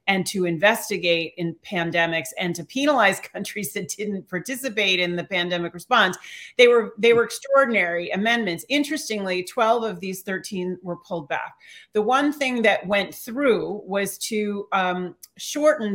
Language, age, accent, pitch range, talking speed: English, 40-59, American, 180-225 Hz, 150 wpm